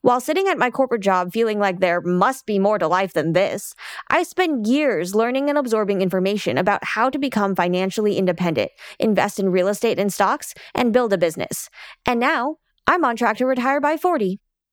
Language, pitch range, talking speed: English, 200-275 Hz, 195 wpm